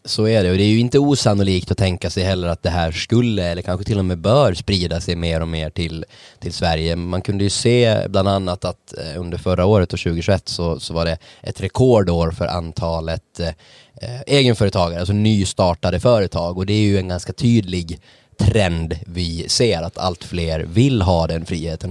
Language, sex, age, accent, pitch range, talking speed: Swedish, male, 20-39, native, 85-105 Hz, 195 wpm